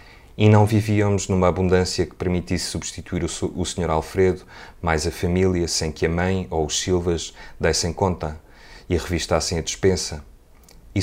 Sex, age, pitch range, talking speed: male, 30-49, 80-95 Hz, 165 wpm